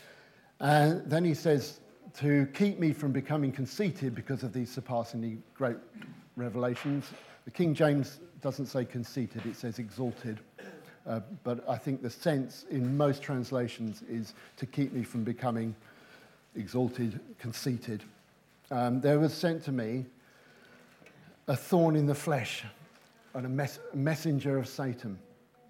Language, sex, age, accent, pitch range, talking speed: English, male, 50-69, British, 120-145 Hz, 135 wpm